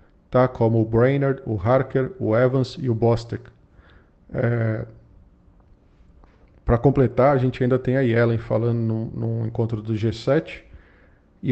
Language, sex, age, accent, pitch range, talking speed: Portuguese, male, 40-59, Brazilian, 110-125 Hz, 140 wpm